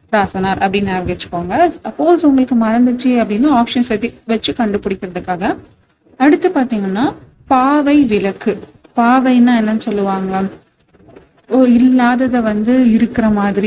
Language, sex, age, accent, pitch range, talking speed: Tamil, female, 30-49, native, 210-265 Hz, 45 wpm